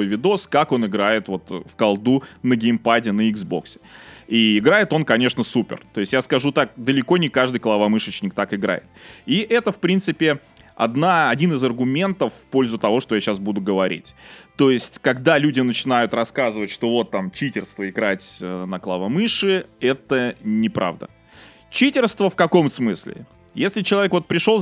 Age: 20-39